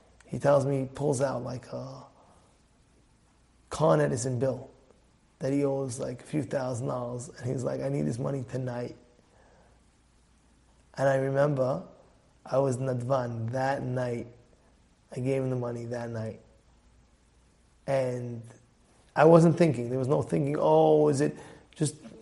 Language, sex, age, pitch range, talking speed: English, male, 30-49, 125-170 Hz, 145 wpm